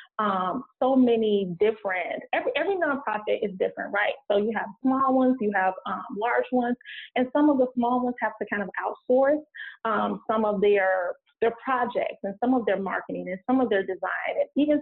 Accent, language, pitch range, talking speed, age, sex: American, English, 200-250 Hz, 200 wpm, 20-39, female